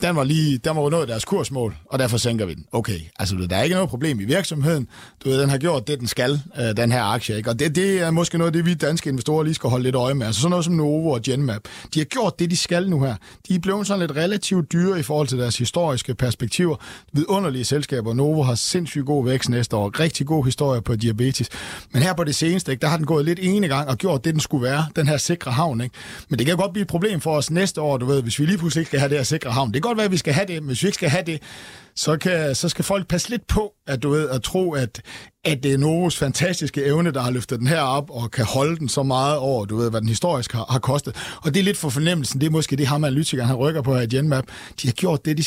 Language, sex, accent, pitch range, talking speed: Danish, male, native, 130-170 Hz, 285 wpm